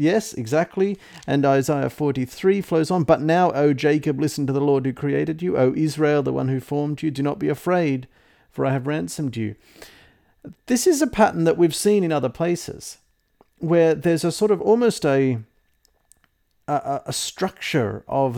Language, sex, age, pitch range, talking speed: English, male, 50-69, 135-175 Hz, 180 wpm